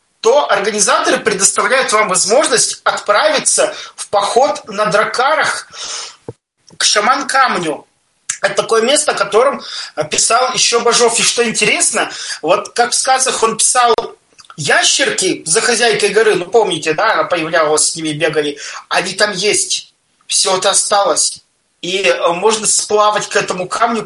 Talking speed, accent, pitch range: 130 wpm, native, 180-230 Hz